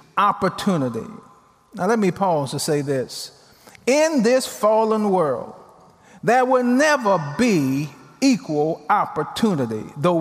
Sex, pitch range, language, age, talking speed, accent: male, 175-255 Hz, English, 40-59, 110 wpm, American